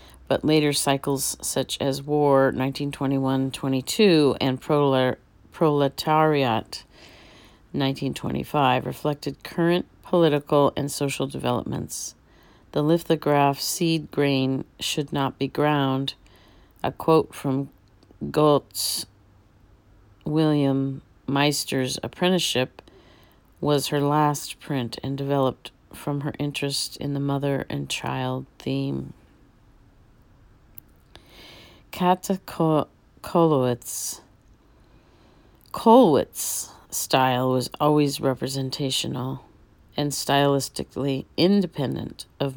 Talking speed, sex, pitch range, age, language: 80 wpm, female, 125-150 Hz, 40-59, English